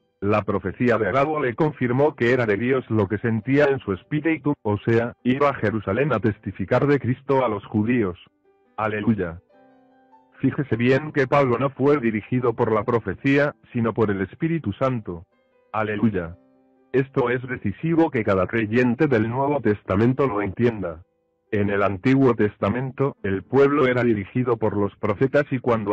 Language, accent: Spanish, Spanish